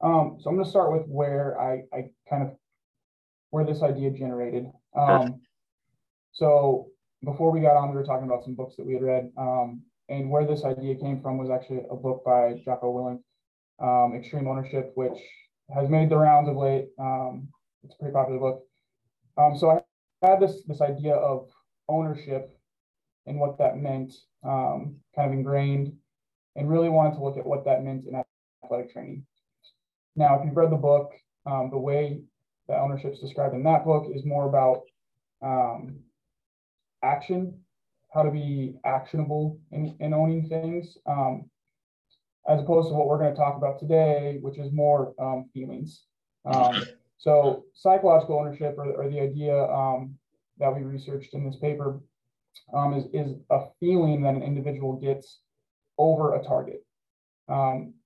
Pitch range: 130-150 Hz